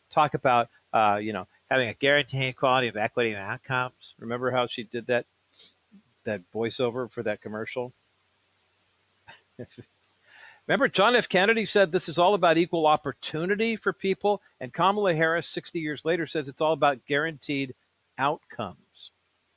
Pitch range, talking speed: 115-195 Hz, 145 wpm